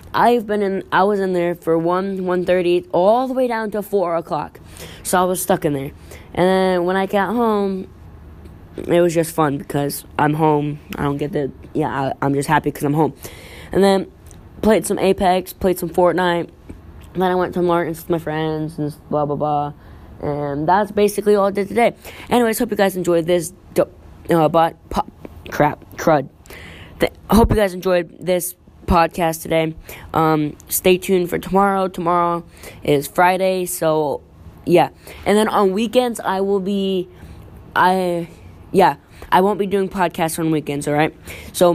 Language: English